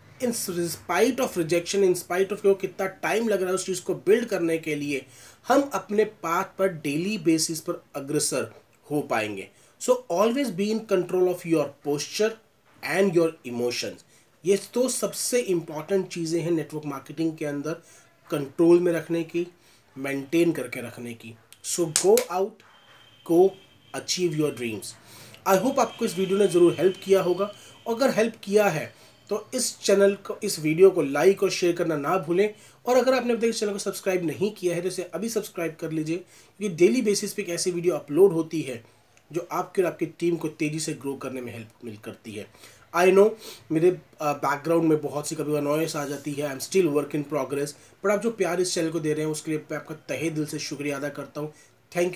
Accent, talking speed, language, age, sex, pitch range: native, 200 wpm, Hindi, 30-49, male, 145-195 Hz